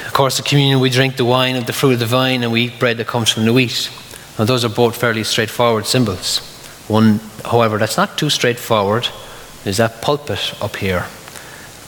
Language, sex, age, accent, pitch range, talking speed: English, male, 30-49, Irish, 110-130 Hz, 205 wpm